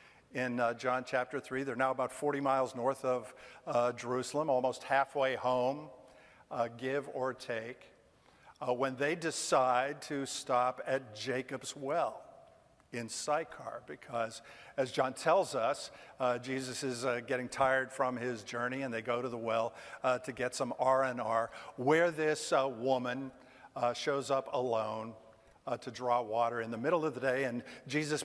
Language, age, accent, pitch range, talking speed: English, 50-69, American, 120-135 Hz, 165 wpm